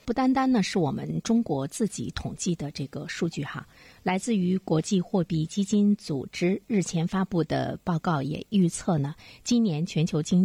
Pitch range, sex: 155-205 Hz, female